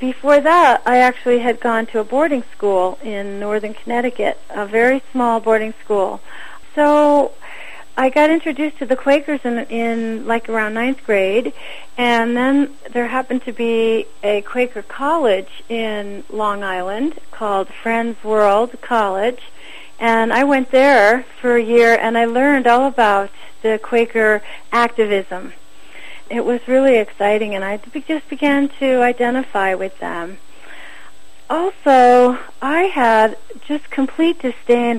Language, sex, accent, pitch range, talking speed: English, female, American, 215-260 Hz, 135 wpm